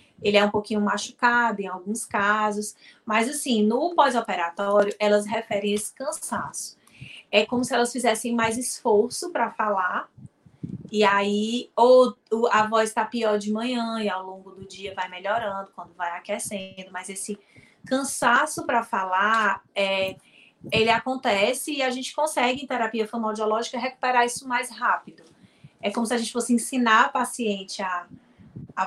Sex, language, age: female, Portuguese, 20-39